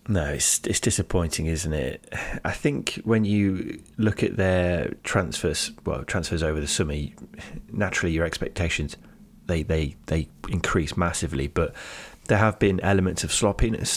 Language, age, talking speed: English, 20-39, 145 wpm